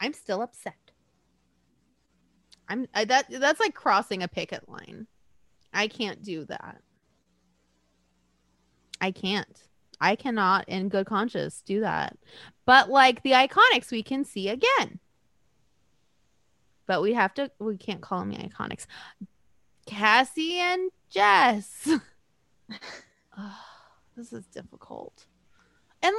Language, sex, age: English, female, 20-39